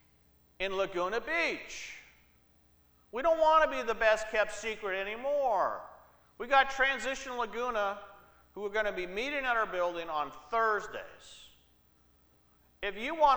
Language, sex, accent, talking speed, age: English, male, American, 140 wpm, 50-69